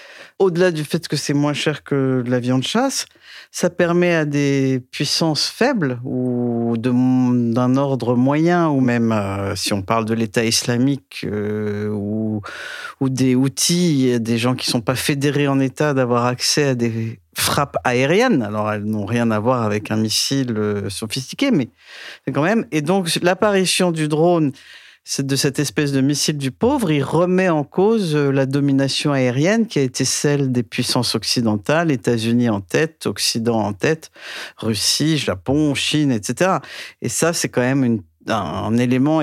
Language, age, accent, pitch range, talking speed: French, 50-69, French, 120-150 Hz, 170 wpm